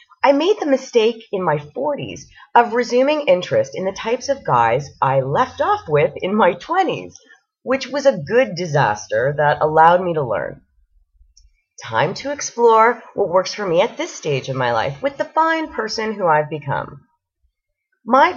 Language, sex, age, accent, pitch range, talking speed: English, female, 30-49, American, 190-290 Hz, 175 wpm